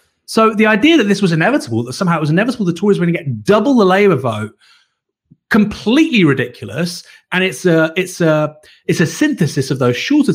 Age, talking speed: 30-49, 185 wpm